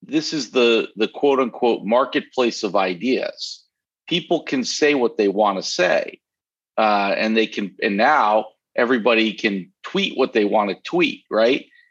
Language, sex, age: English, male, 50-69